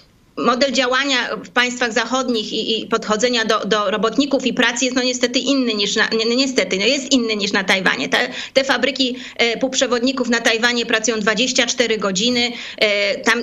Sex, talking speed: female, 170 wpm